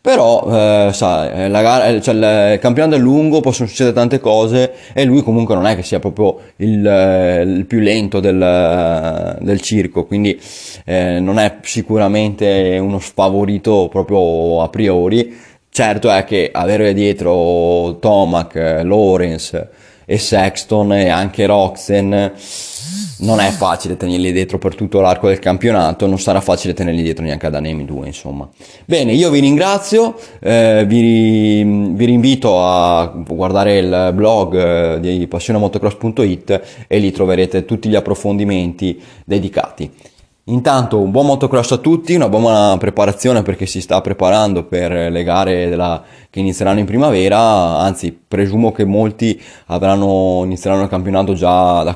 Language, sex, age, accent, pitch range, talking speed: Italian, male, 20-39, native, 90-110 Hz, 135 wpm